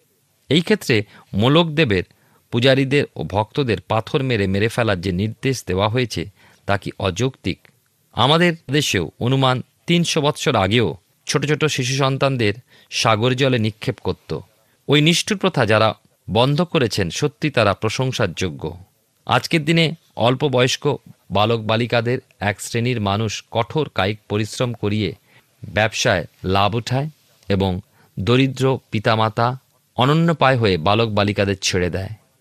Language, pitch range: Bengali, 105-140 Hz